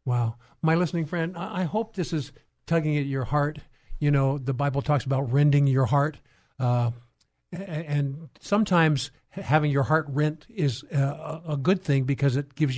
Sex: male